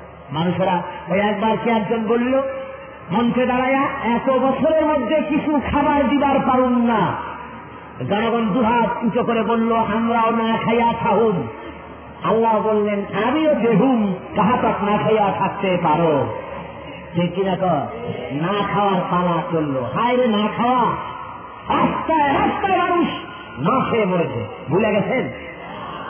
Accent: native